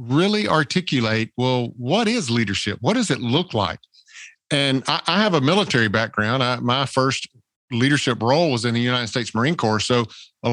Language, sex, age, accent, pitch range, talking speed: English, male, 50-69, American, 115-145 Hz, 175 wpm